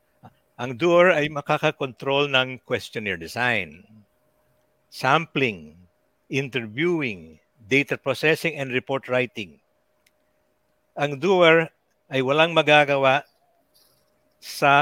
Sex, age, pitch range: male, 60-79, 120-150 Hz